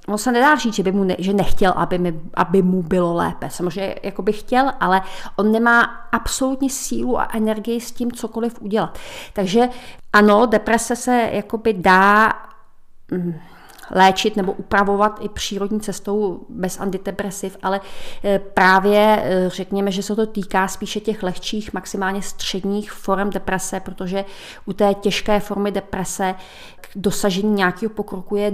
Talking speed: 145 wpm